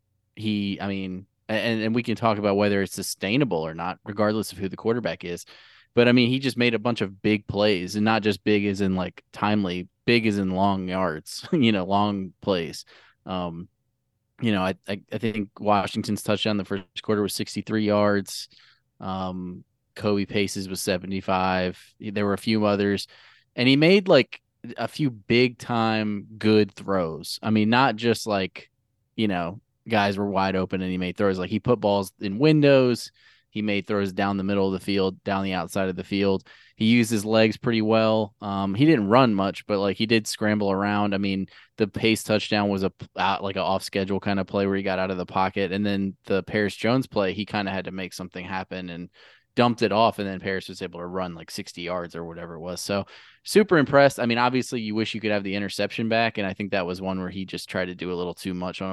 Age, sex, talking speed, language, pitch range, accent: 20-39, male, 225 wpm, English, 95-110 Hz, American